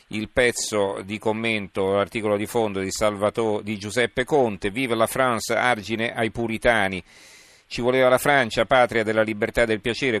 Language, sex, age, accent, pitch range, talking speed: Italian, male, 40-59, native, 100-115 Hz, 165 wpm